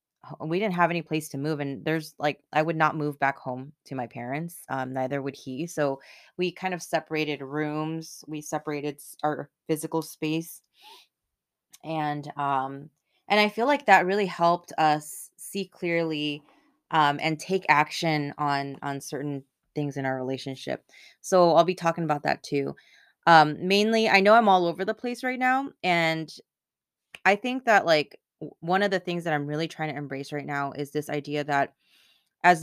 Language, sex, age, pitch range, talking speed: English, female, 20-39, 145-175 Hz, 180 wpm